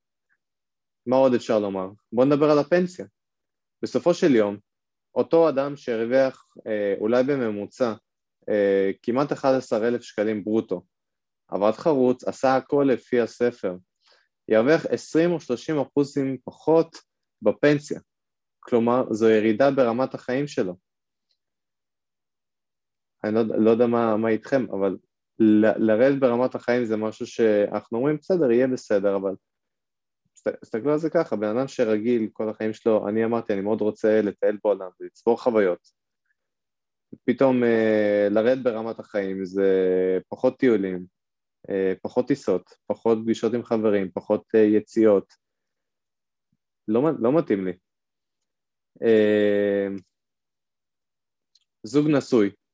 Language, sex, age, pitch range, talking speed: Hebrew, male, 20-39, 105-130 Hz, 120 wpm